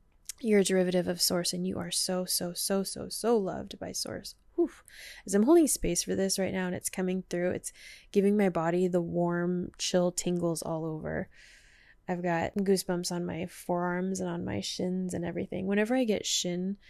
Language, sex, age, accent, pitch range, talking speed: English, female, 20-39, American, 175-200 Hz, 190 wpm